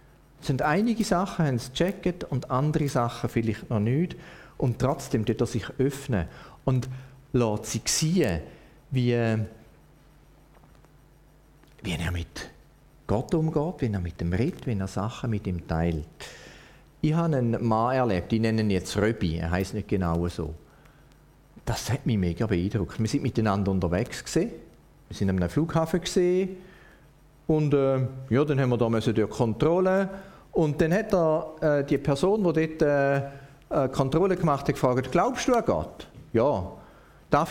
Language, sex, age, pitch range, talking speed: German, male, 40-59, 105-150 Hz, 155 wpm